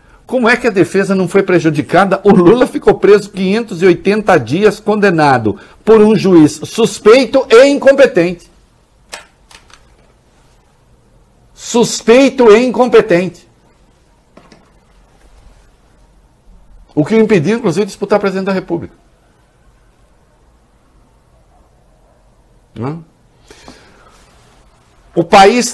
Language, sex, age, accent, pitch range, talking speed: English, male, 60-79, Brazilian, 120-195 Hz, 85 wpm